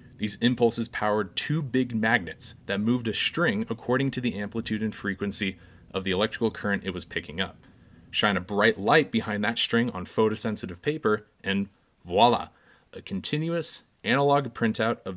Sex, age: male, 30-49